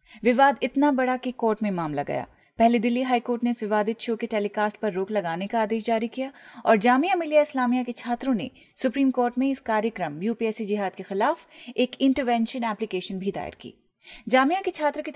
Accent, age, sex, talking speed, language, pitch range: native, 30-49, female, 200 wpm, Hindi, 215-260 Hz